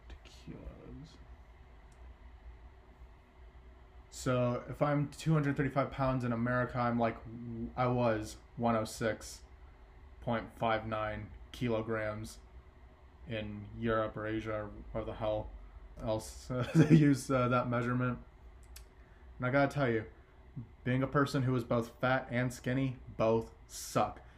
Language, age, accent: English, 20-39, American